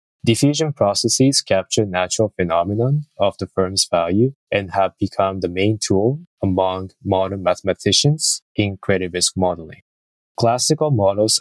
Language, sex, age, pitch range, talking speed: English, male, 20-39, 95-115 Hz, 125 wpm